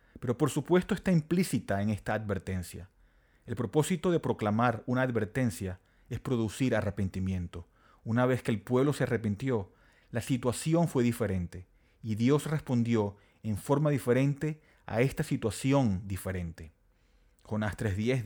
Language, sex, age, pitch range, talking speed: Spanish, male, 30-49, 100-130 Hz, 130 wpm